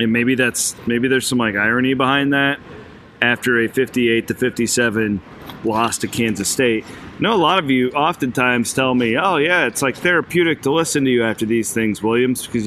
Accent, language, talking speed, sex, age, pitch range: American, English, 195 wpm, male, 40-59, 105-125 Hz